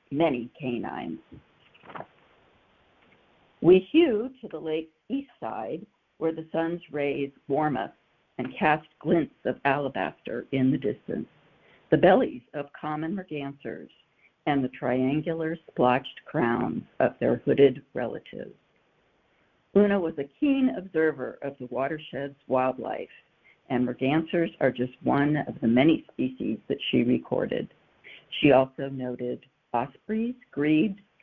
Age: 60-79